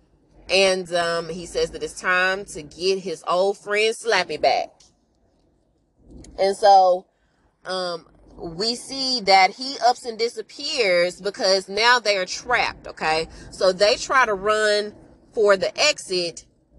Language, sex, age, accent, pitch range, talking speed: English, female, 20-39, American, 175-235 Hz, 135 wpm